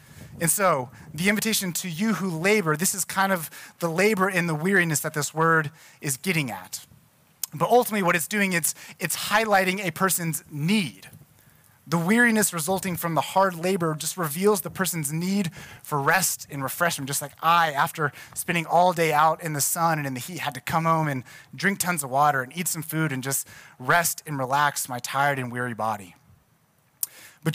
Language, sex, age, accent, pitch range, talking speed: English, male, 30-49, American, 140-185 Hz, 195 wpm